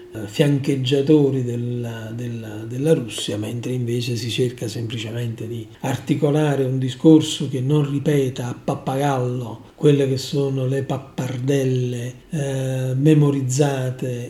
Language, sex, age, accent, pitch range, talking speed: Italian, male, 40-59, native, 120-145 Hz, 105 wpm